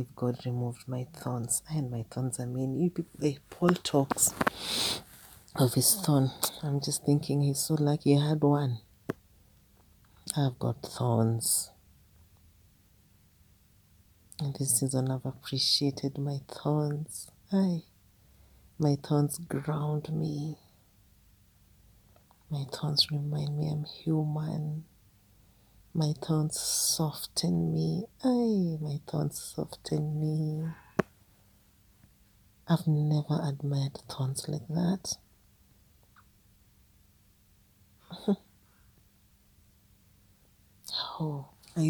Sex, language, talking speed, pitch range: female, English, 90 wpm, 100-155 Hz